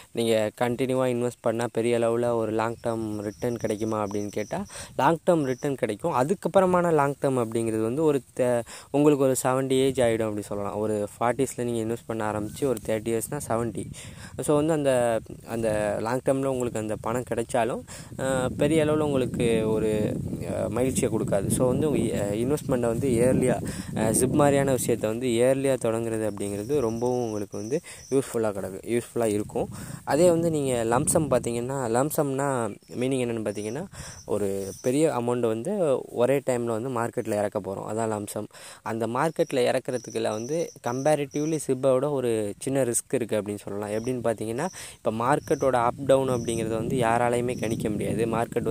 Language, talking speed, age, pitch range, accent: Tamil, 150 wpm, 20-39, 110-135 Hz, native